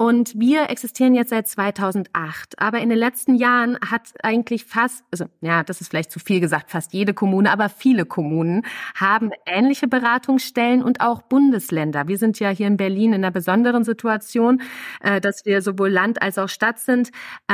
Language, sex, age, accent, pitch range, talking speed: German, female, 30-49, German, 190-240 Hz, 180 wpm